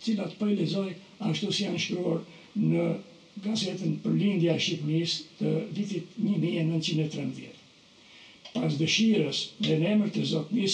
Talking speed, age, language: 110 wpm, 60-79, English